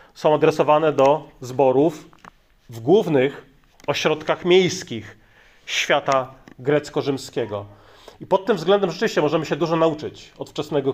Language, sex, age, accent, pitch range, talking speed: Polish, male, 30-49, native, 130-160 Hz, 115 wpm